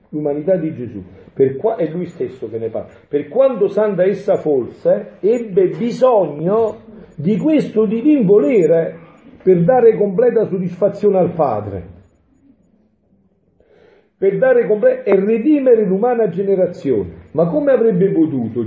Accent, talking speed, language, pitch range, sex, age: native, 125 wpm, Italian, 145-215 Hz, male, 50-69